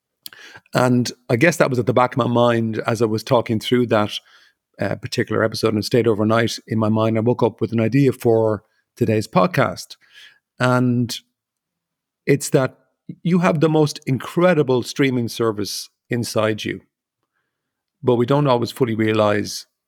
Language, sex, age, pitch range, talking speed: English, male, 40-59, 110-130 Hz, 160 wpm